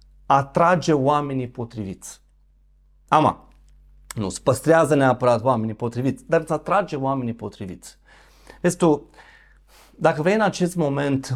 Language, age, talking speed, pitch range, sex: Romanian, 30-49, 115 wpm, 110-145 Hz, male